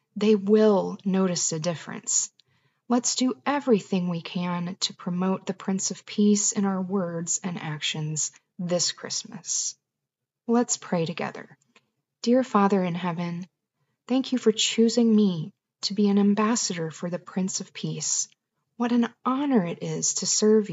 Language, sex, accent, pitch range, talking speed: English, female, American, 175-215 Hz, 150 wpm